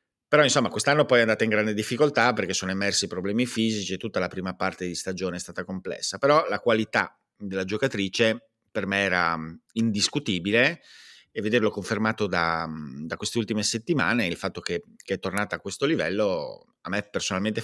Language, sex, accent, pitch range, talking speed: Italian, male, native, 90-115 Hz, 180 wpm